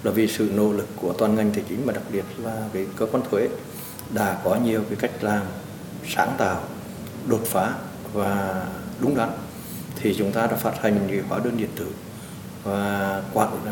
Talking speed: 190 wpm